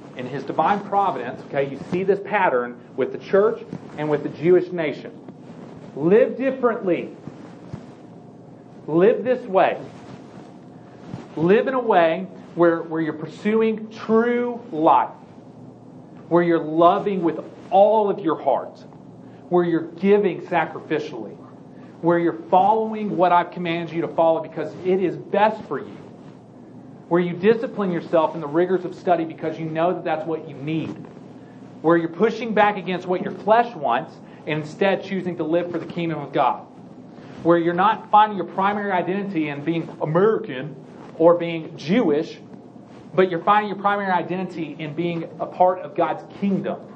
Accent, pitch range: American, 165-200 Hz